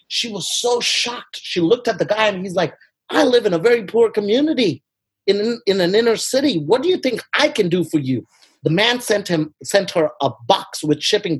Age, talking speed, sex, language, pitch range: 30-49, 225 wpm, male, English, 145-210 Hz